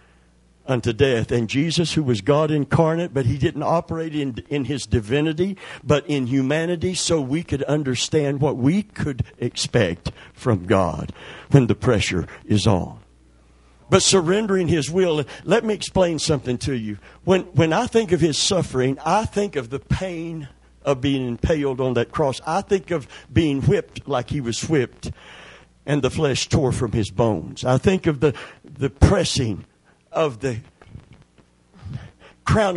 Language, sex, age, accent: English, male, 60-79, American